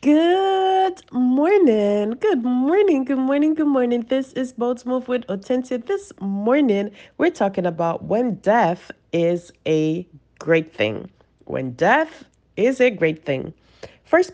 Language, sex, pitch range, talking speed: English, female, 160-260 Hz, 140 wpm